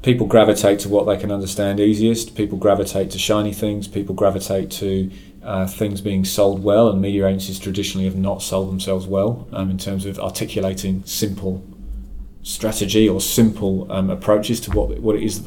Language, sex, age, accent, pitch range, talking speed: English, male, 30-49, British, 95-110 Hz, 180 wpm